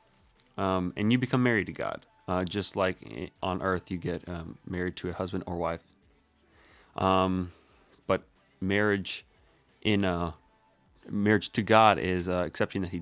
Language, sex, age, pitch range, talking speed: English, male, 30-49, 90-110 Hz, 155 wpm